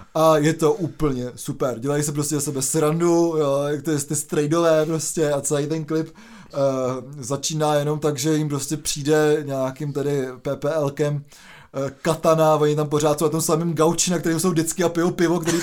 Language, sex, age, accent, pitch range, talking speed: Czech, male, 20-39, native, 150-170 Hz, 180 wpm